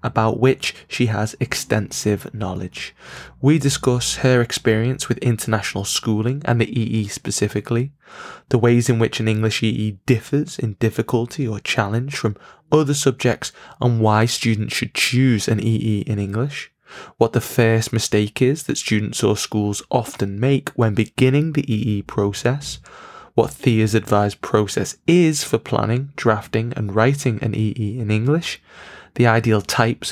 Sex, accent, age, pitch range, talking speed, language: male, British, 20-39, 110-130 Hz, 145 wpm, English